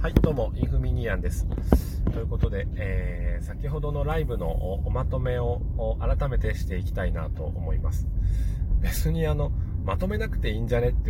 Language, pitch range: Japanese, 80-100 Hz